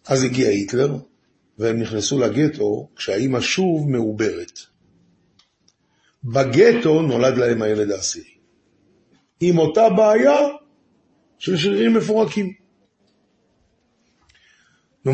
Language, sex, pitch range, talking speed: Hebrew, male, 110-165 Hz, 85 wpm